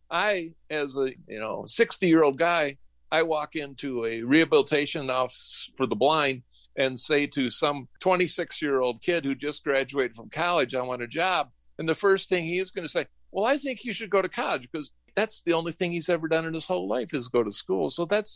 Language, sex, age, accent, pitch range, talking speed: English, male, 50-69, American, 125-170 Hz, 215 wpm